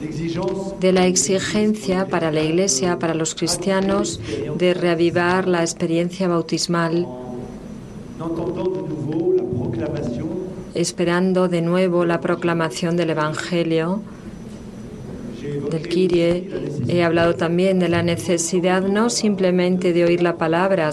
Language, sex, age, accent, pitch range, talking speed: Spanish, female, 40-59, Spanish, 165-190 Hz, 100 wpm